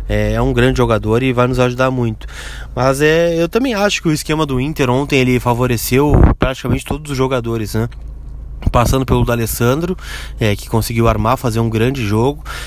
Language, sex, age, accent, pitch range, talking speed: Portuguese, male, 20-39, Brazilian, 115-145 Hz, 180 wpm